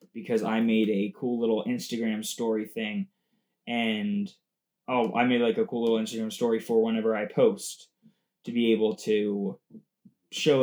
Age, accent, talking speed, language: 20-39, American, 160 wpm, English